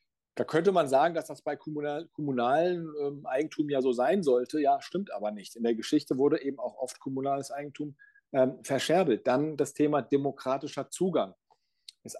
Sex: male